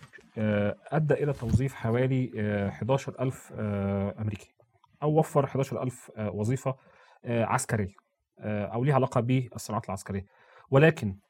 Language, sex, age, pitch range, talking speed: Arabic, male, 30-49, 110-150 Hz, 100 wpm